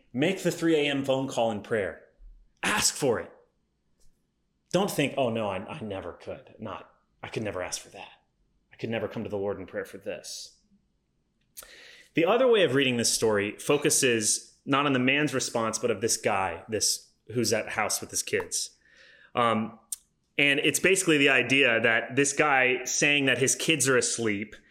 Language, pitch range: English, 120-160 Hz